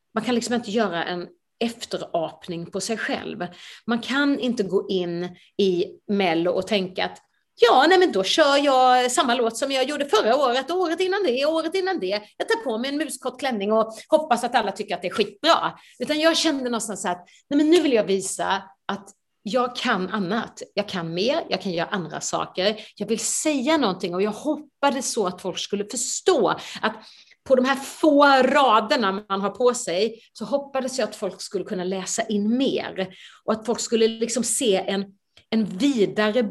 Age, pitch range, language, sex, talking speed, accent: 30-49, 195-265 Hz, Swedish, female, 195 wpm, native